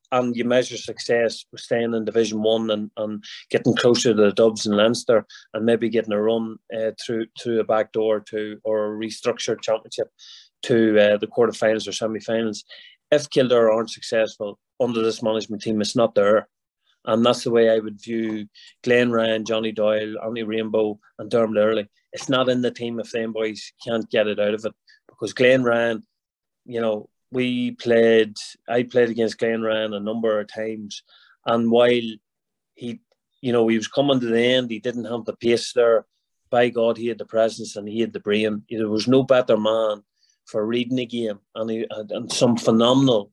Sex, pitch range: male, 110-120 Hz